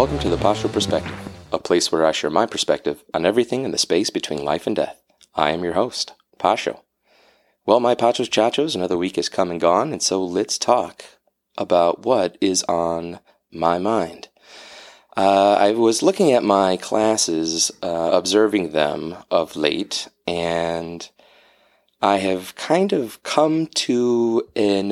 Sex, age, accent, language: male, 30-49, American, English